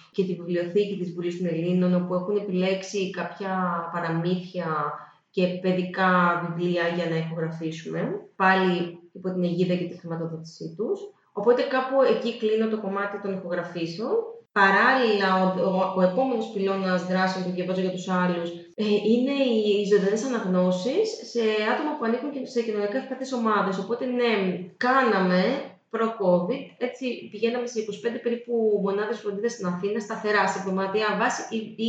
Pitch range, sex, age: 180-230 Hz, female, 20-39